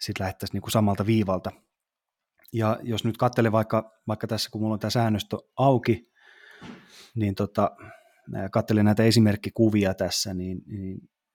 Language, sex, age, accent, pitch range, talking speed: Finnish, male, 30-49, native, 100-110 Hz, 135 wpm